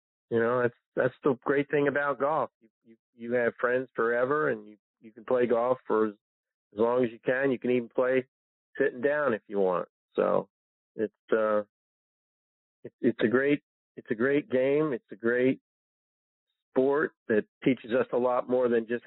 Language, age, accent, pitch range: English, 40-59, American, 110-130 Hz